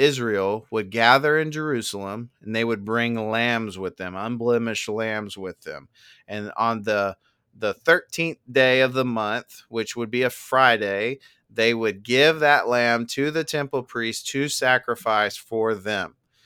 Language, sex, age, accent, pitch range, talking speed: English, male, 30-49, American, 110-135 Hz, 155 wpm